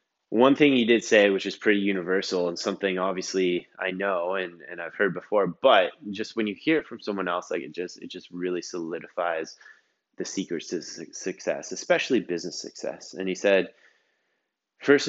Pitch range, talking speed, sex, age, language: 90-105 Hz, 175 wpm, male, 20-39, English